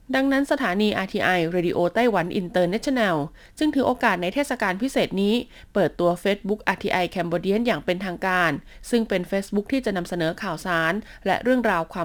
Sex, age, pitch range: female, 20-39, 170-230 Hz